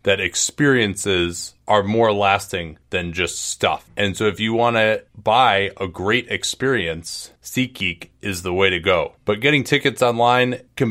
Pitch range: 90-120 Hz